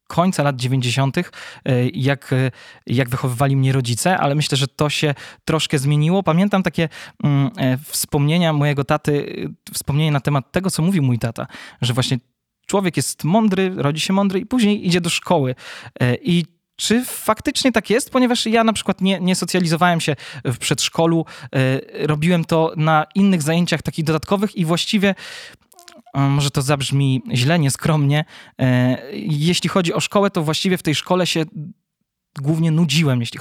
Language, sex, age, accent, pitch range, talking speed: Polish, male, 20-39, native, 135-175 Hz, 155 wpm